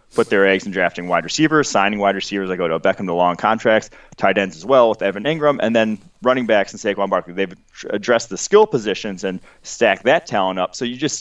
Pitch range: 95-110 Hz